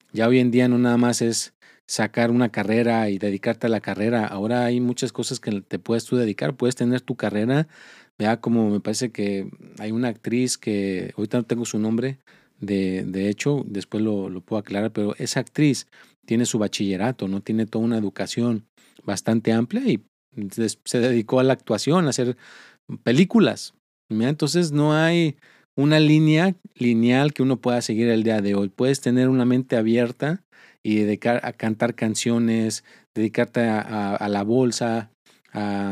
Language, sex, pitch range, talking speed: Spanish, male, 105-125 Hz, 170 wpm